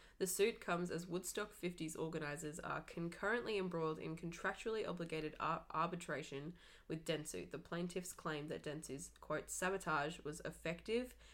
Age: 10-29